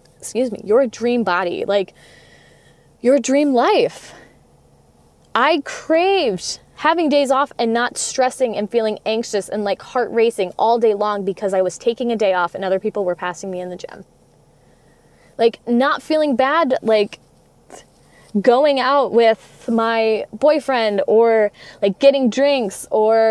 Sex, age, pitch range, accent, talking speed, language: female, 20-39, 180-250 Hz, American, 150 wpm, English